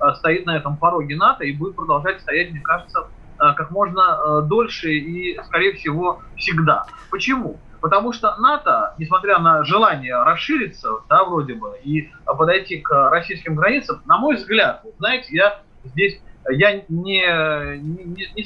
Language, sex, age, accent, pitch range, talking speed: Russian, male, 30-49, native, 150-200 Hz, 145 wpm